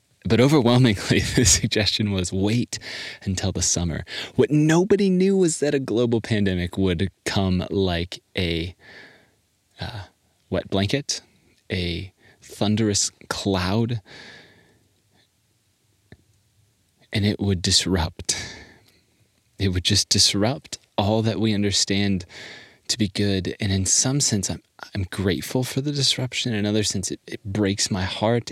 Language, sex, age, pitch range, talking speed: English, male, 20-39, 95-115 Hz, 125 wpm